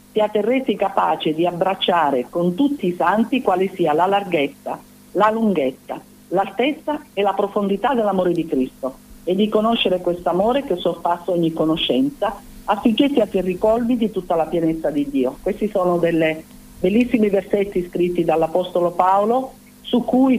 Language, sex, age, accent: Italian, female, 50-69, native